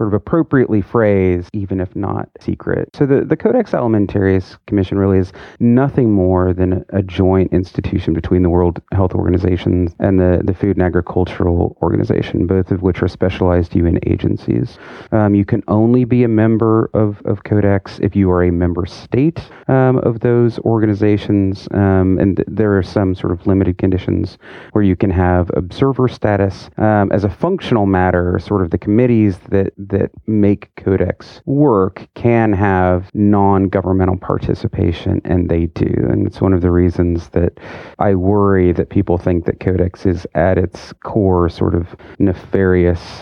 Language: English